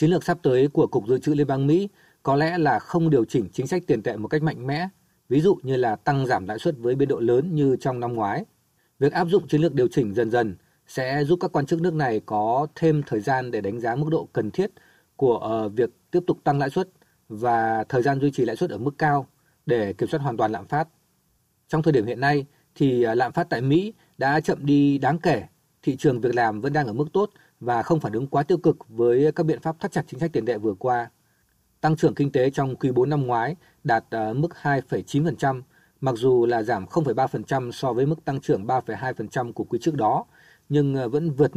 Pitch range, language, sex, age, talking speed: 125-160 Hz, Vietnamese, male, 20-39, 240 wpm